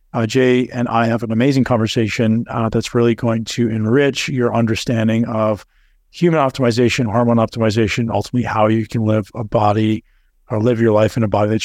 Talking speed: 185 wpm